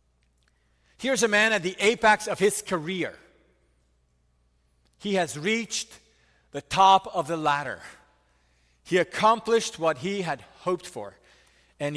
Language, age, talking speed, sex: English, 40-59, 125 wpm, male